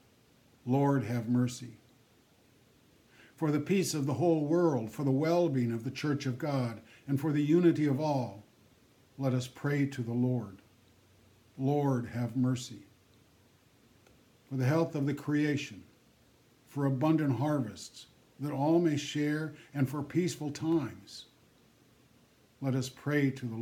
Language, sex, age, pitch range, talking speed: English, male, 60-79, 120-145 Hz, 140 wpm